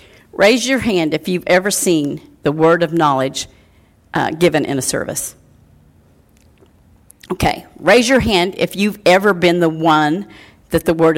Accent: American